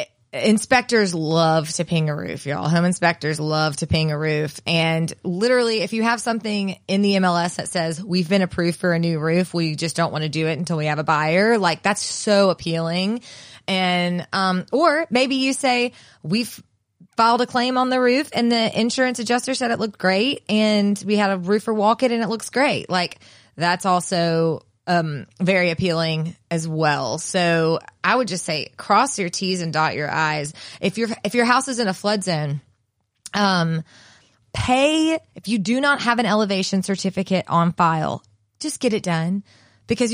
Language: English